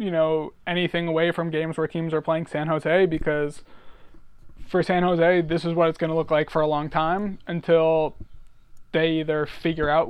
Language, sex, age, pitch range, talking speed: English, male, 20-39, 155-180 Hz, 195 wpm